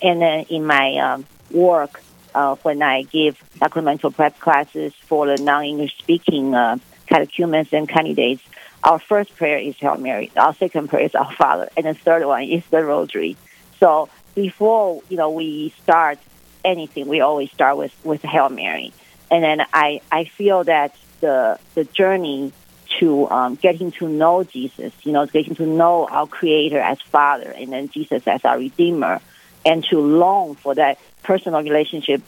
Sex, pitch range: female, 140-170 Hz